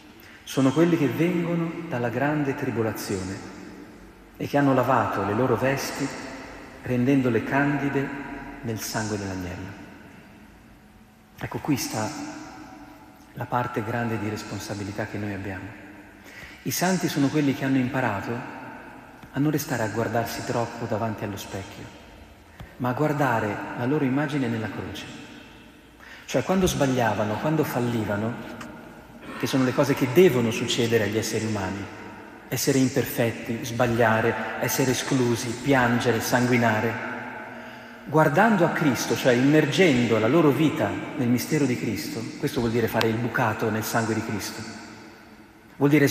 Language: Italian